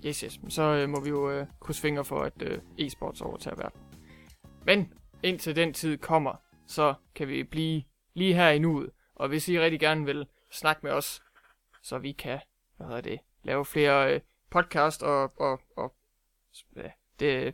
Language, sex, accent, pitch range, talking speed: English, male, Danish, 145-170 Hz, 180 wpm